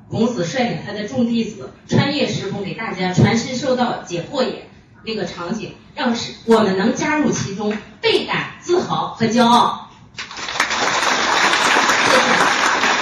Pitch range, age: 200-255 Hz, 30-49